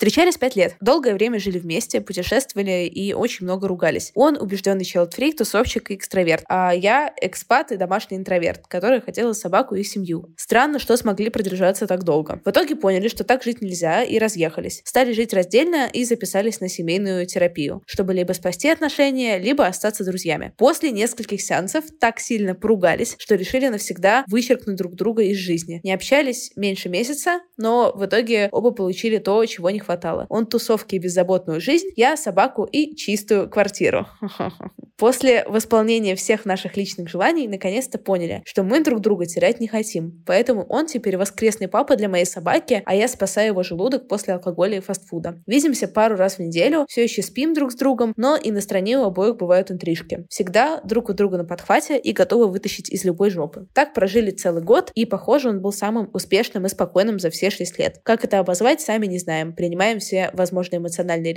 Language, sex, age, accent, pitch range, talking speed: Russian, female, 20-39, native, 185-235 Hz, 180 wpm